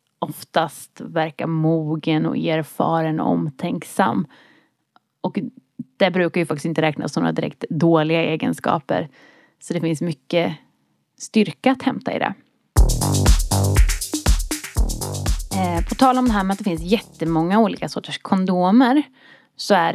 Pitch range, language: 165-250 Hz, Swedish